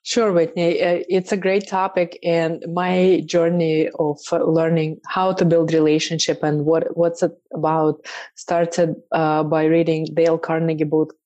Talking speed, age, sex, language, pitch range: 145 wpm, 20-39, female, English, 155-175 Hz